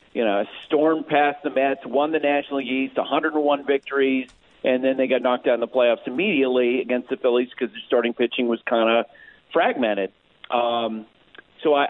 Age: 50-69